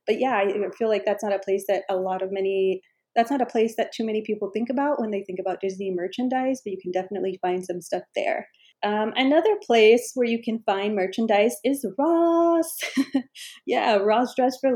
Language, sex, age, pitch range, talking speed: English, female, 30-49, 190-235 Hz, 210 wpm